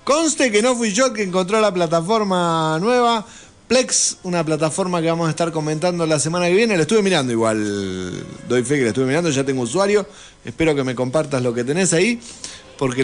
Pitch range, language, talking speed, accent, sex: 120-170 Hz, Spanish, 205 wpm, Argentinian, male